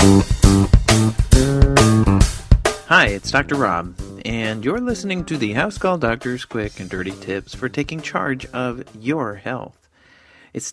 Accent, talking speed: American, 130 wpm